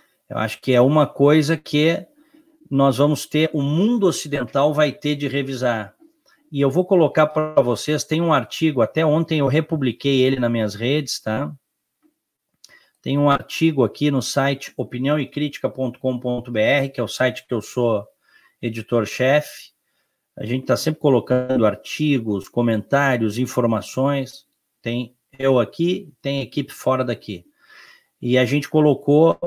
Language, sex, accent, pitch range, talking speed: Portuguese, male, Brazilian, 125-160 Hz, 140 wpm